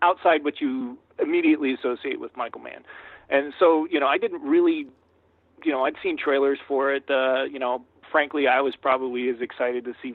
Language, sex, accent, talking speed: English, male, American, 195 wpm